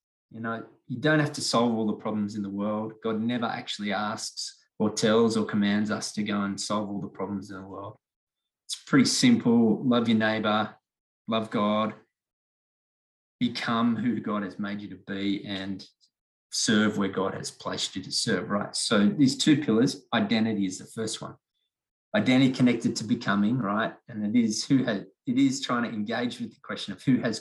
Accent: Australian